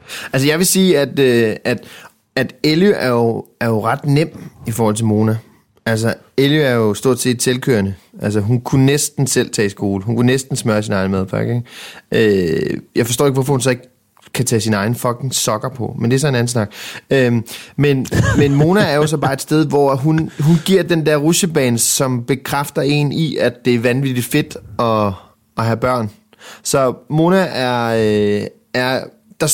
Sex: male